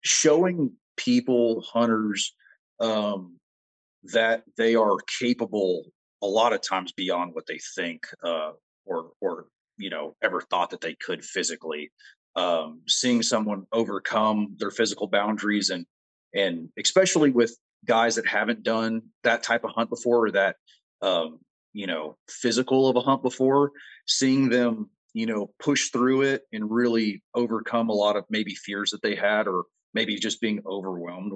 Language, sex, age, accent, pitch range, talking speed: English, male, 30-49, American, 95-120 Hz, 155 wpm